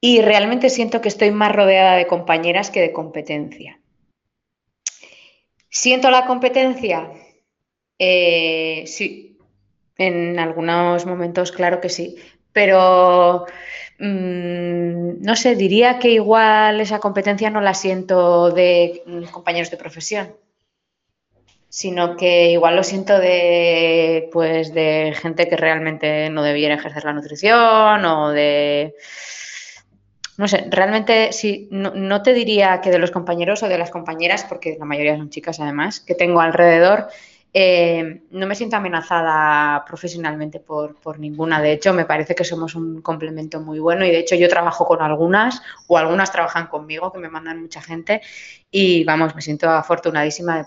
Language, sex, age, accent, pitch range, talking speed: Spanish, female, 20-39, Spanish, 160-190 Hz, 145 wpm